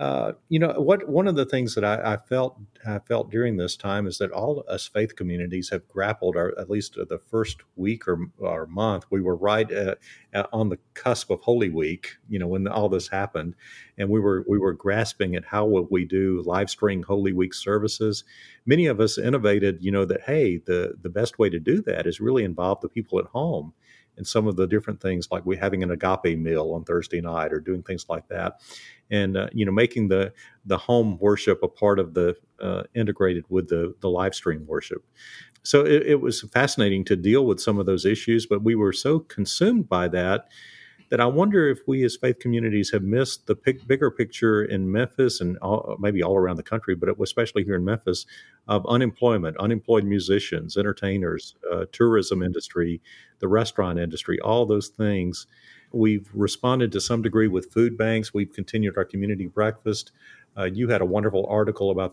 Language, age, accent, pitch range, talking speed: English, 50-69, American, 95-110 Hz, 205 wpm